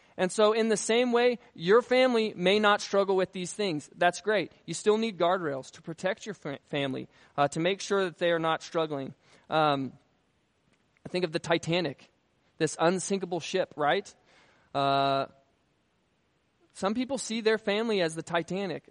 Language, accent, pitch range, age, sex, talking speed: English, American, 150-195 Hz, 20-39, male, 165 wpm